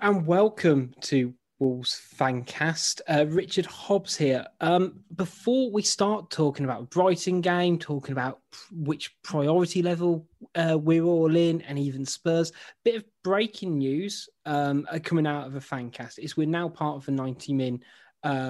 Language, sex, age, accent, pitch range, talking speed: English, male, 20-39, British, 140-180 Hz, 165 wpm